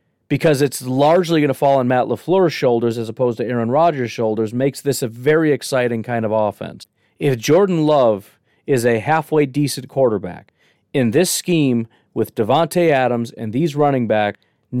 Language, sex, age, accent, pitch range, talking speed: English, male, 40-59, American, 125-155 Hz, 170 wpm